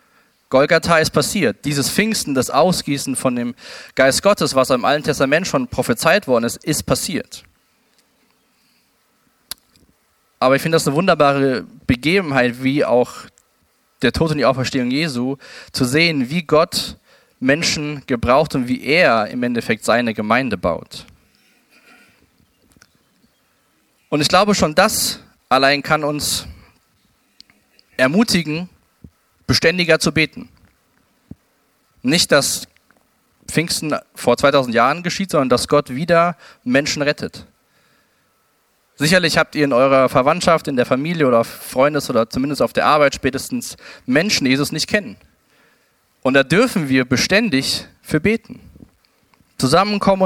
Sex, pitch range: male, 130-175 Hz